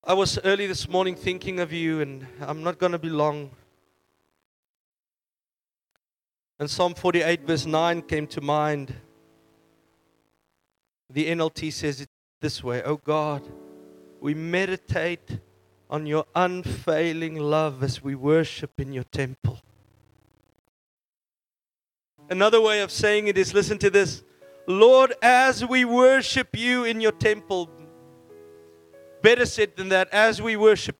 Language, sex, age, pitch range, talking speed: English, male, 40-59, 130-210 Hz, 130 wpm